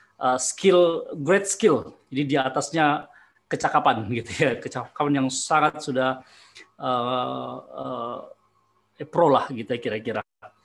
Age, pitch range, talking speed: 20-39, 130-145 Hz, 115 wpm